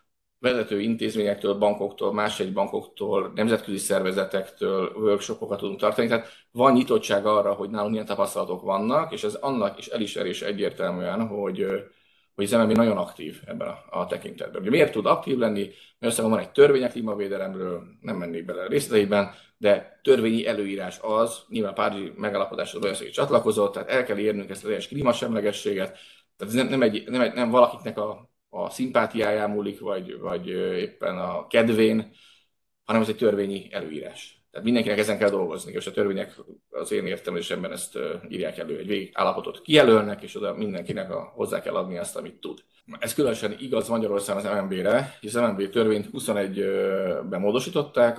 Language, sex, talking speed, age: Hungarian, male, 160 wpm, 30-49